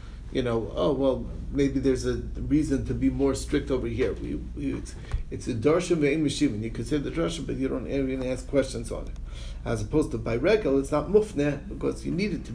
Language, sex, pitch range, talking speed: English, male, 110-145 Hz, 220 wpm